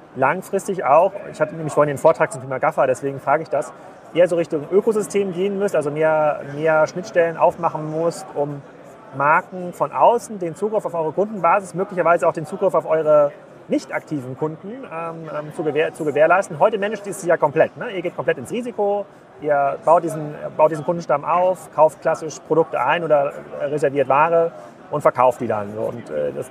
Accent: German